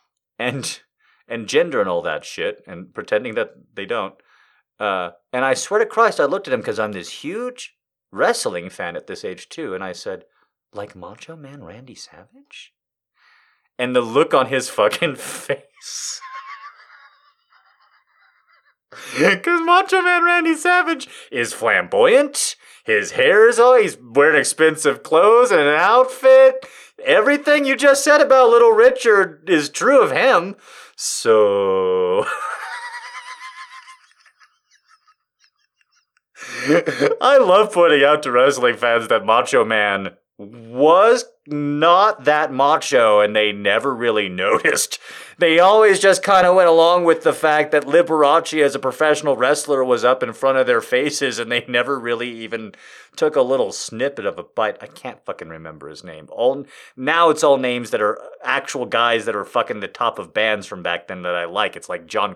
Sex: male